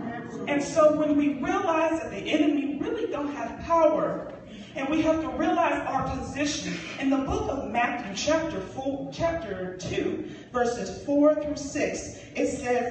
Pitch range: 240-320 Hz